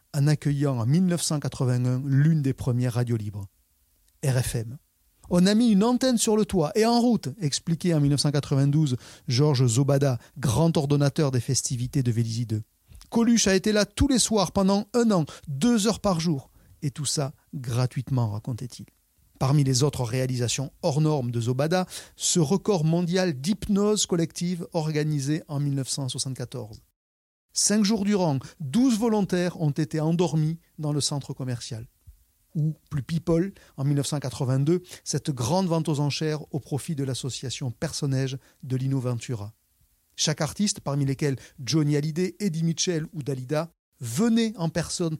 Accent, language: French, French